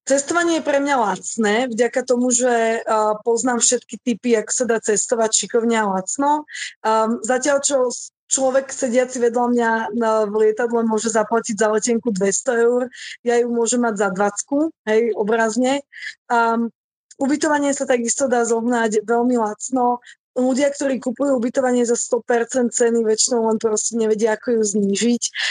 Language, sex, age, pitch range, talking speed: Slovak, female, 20-39, 220-255 Hz, 155 wpm